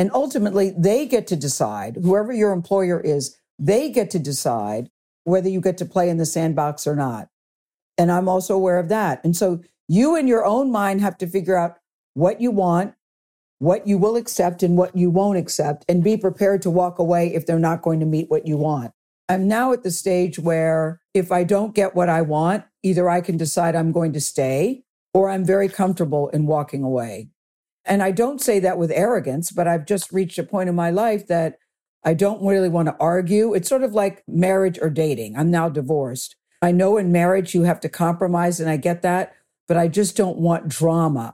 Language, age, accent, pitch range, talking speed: English, 50-69, American, 160-195 Hz, 215 wpm